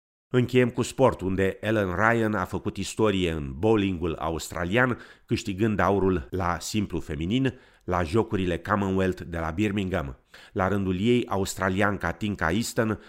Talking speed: 135 wpm